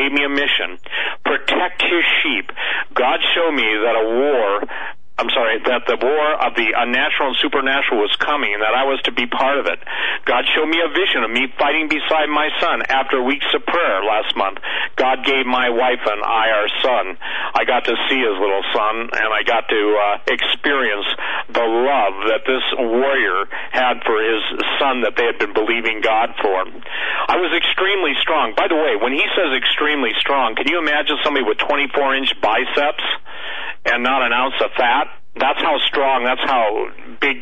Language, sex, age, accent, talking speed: English, male, 50-69, American, 190 wpm